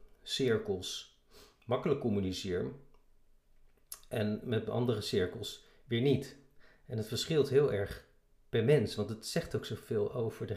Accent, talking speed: Dutch, 130 wpm